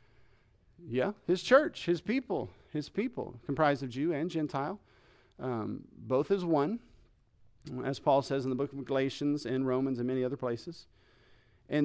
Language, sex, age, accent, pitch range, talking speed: English, male, 40-59, American, 125-170 Hz, 155 wpm